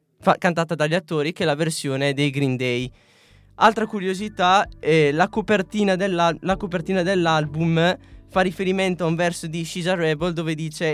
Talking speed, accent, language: 160 wpm, native, Italian